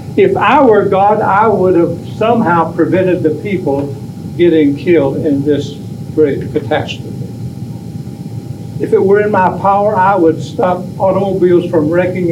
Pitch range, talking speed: 140-175 Hz, 140 wpm